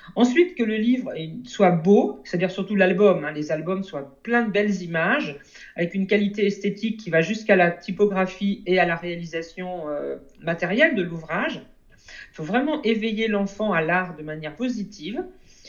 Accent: French